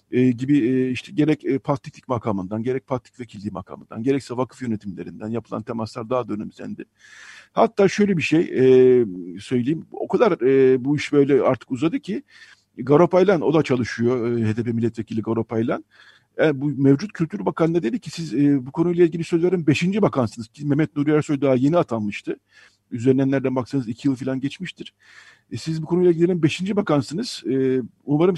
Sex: male